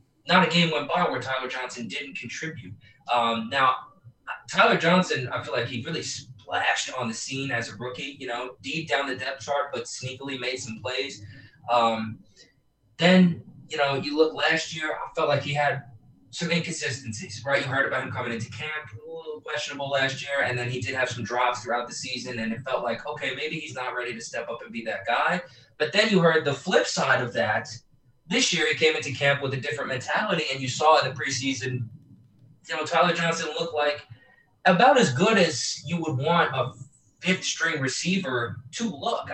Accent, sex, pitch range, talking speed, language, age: American, male, 120-155 Hz, 205 wpm, English, 20-39